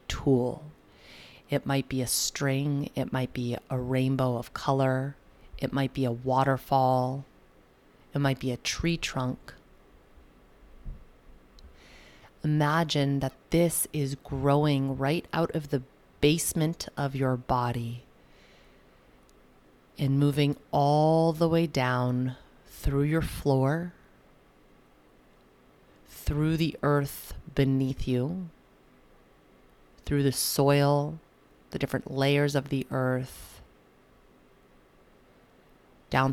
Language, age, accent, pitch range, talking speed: English, 30-49, American, 125-145 Hz, 100 wpm